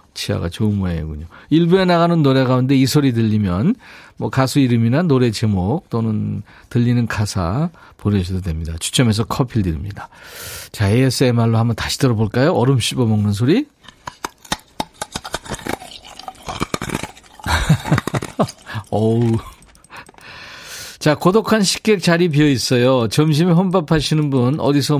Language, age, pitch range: Korean, 40-59, 105-150 Hz